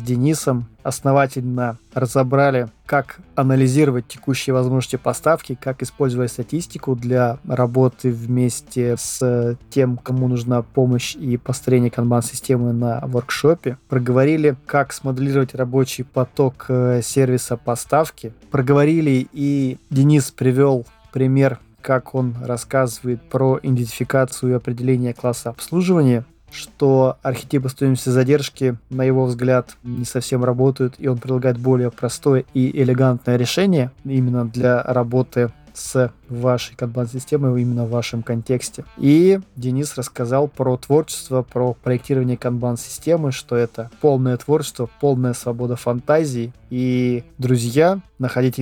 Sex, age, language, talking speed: male, 20-39, Russian, 115 wpm